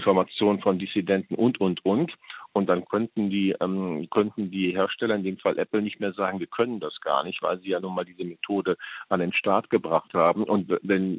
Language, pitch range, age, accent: German, 95-110 Hz, 50-69, German